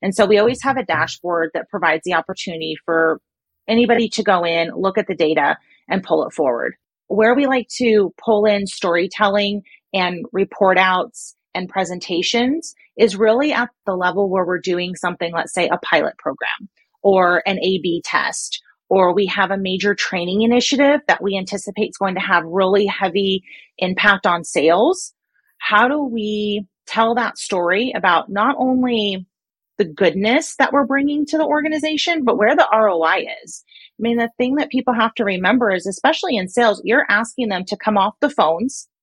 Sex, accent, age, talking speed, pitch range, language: female, American, 30-49, 180 wpm, 185-230 Hz, English